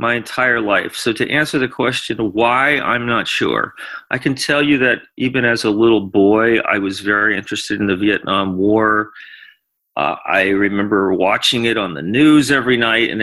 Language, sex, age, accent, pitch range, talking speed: English, male, 40-59, American, 105-145 Hz, 185 wpm